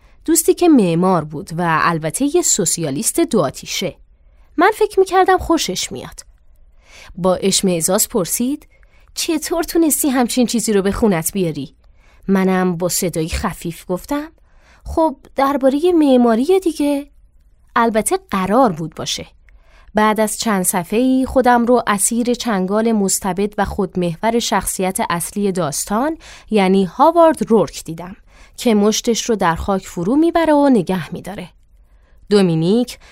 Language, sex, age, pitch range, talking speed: Persian, female, 20-39, 180-255 Hz, 125 wpm